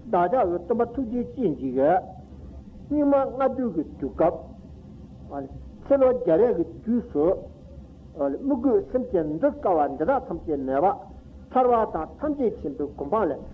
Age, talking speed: 60-79, 55 wpm